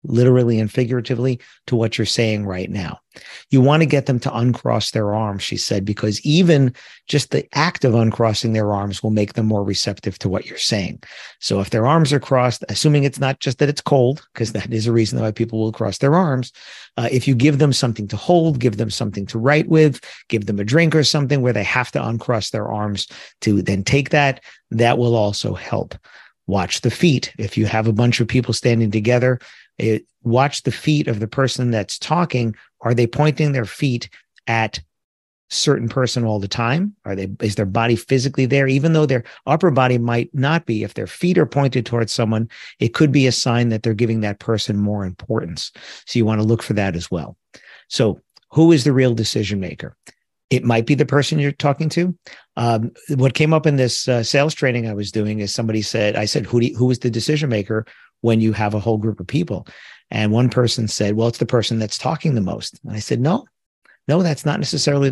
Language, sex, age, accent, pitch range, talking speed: English, male, 50-69, American, 110-140 Hz, 220 wpm